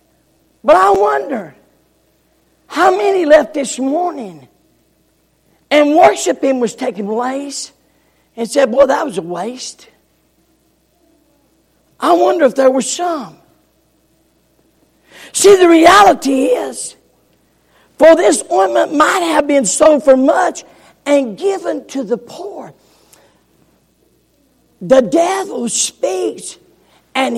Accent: American